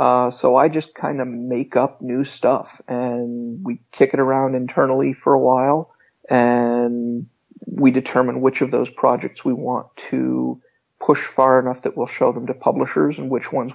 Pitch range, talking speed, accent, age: 125-140 Hz, 180 wpm, American, 50-69